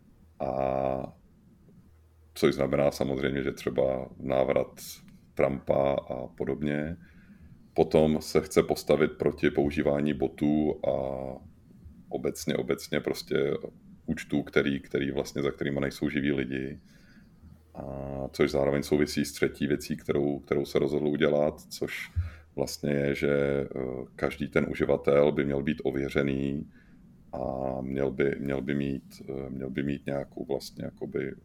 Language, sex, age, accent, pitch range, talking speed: Czech, male, 40-59, native, 65-75 Hz, 125 wpm